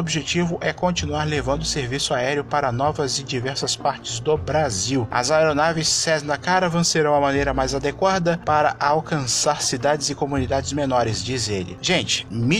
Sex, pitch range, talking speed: male, 130-165 Hz, 155 wpm